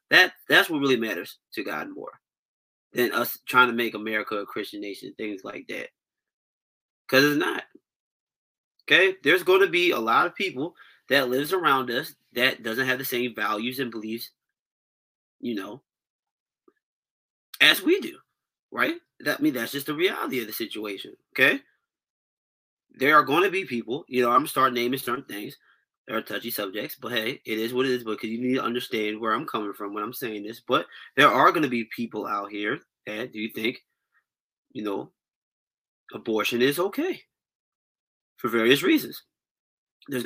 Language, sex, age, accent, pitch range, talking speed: English, male, 20-39, American, 110-165 Hz, 180 wpm